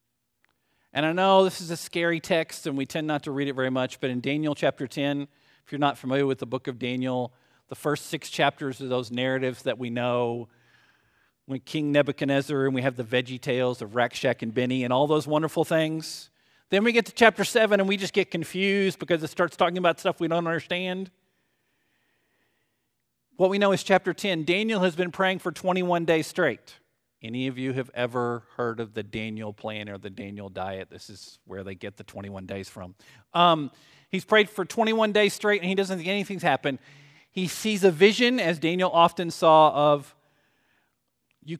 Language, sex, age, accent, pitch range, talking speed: English, male, 40-59, American, 130-185 Hz, 200 wpm